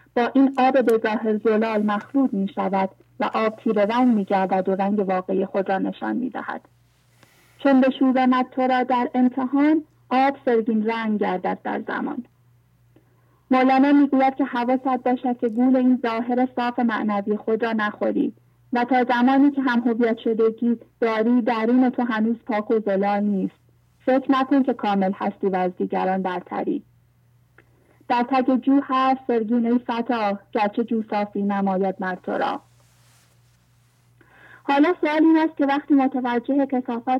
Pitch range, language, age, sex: 200-255 Hz, English, 30-49, female